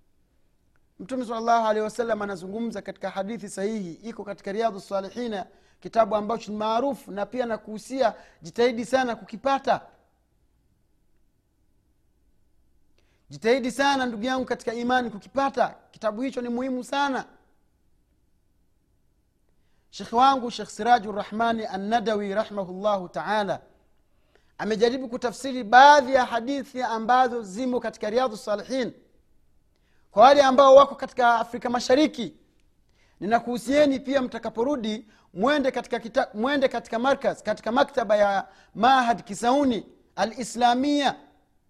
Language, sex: Swahili, male